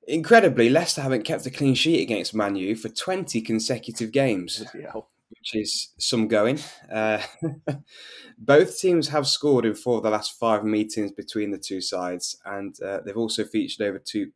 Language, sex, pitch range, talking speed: English, male, 105-125 Hz, 170 wpm